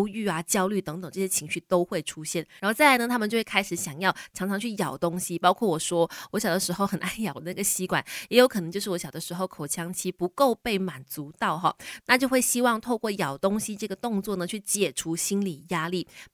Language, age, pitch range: Chinese, 20-39, 170-220 Hz